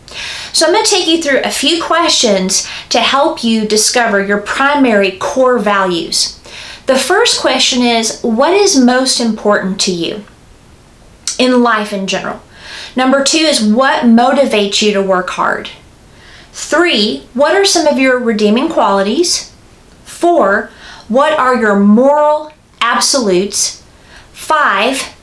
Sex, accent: female, American